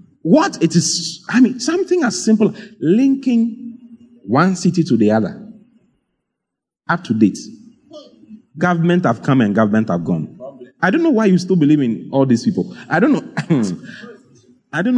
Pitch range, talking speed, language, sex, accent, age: 145-230 Hz, 160 wpm, English, male, Nigerian, 30-49